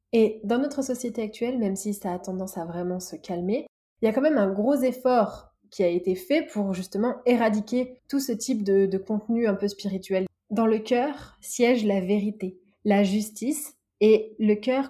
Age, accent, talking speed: 30-49, French, 195 wpm